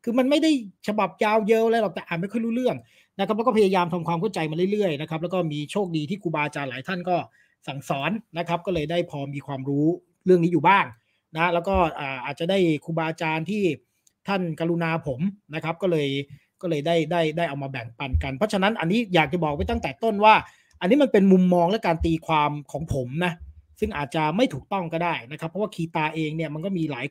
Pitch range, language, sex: 150-190 Hz, English, male